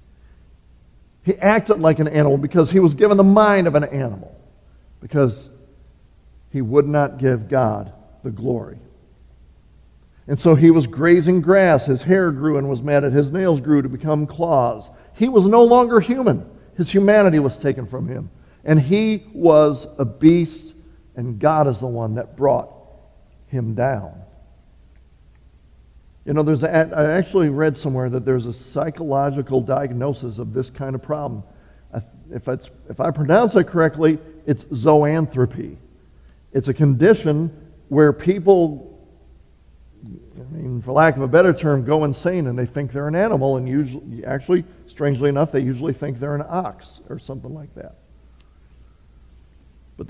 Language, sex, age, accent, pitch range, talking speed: English, male, 50-69, American, 100-155 Hz, 155 wpm